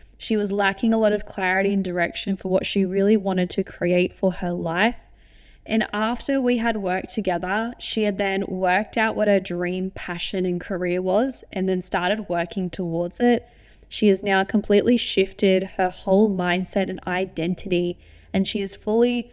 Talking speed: 175 wpm